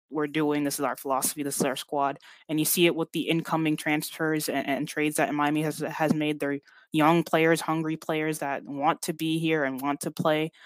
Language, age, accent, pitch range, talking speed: English, 20-39, American, 150-170 Hz, 225 wpm